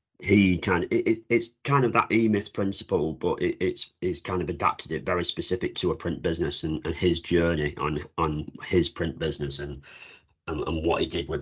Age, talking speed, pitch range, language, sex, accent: 40-59, 215 wpm, 75-90 Hz, English, male, British